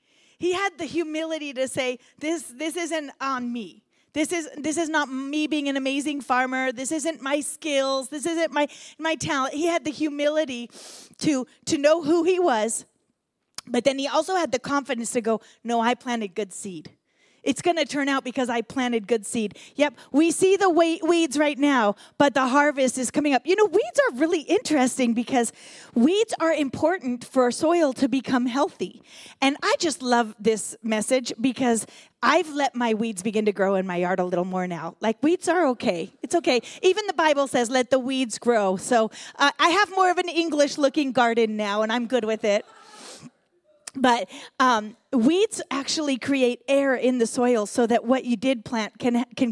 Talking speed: 195 wpm